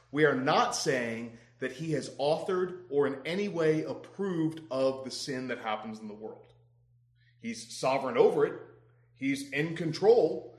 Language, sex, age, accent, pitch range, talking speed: English, male, 30-49, American, 120-170 Hz, 160 wpm